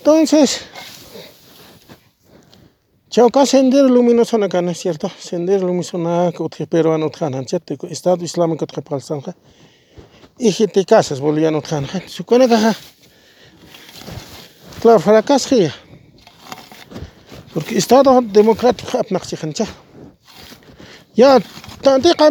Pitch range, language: 165-235 Hz, English